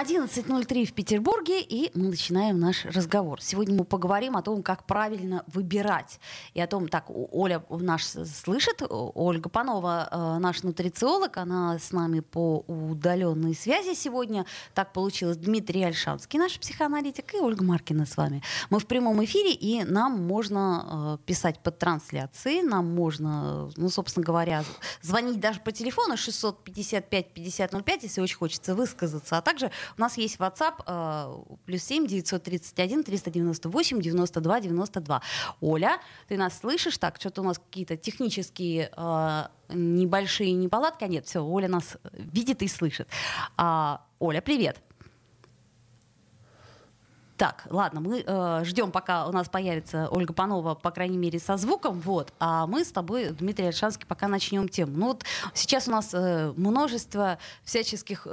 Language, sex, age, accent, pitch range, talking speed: Russian, female, 20-39, native, 170-225 Hz, 145 wpm